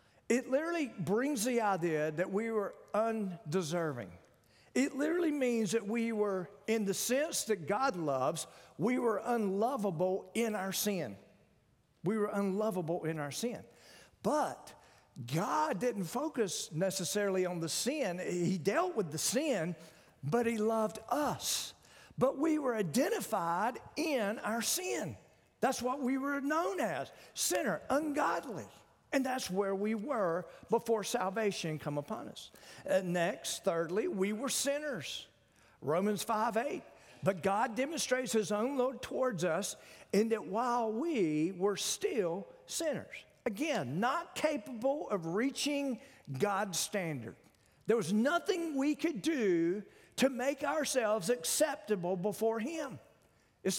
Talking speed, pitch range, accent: 130 wpm, 185-265 Hz, American